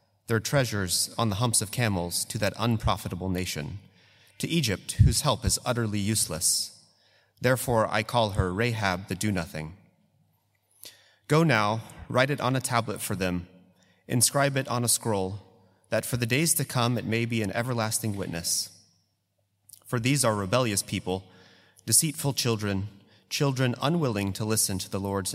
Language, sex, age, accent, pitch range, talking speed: English, male, 30-49, American, 95-125 Hz, 155 wpm